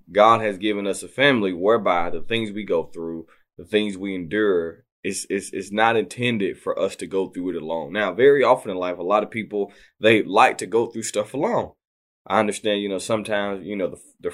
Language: English